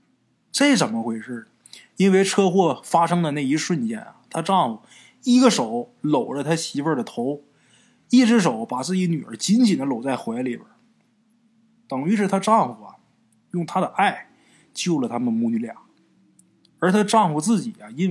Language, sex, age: Chinese, male, 20-39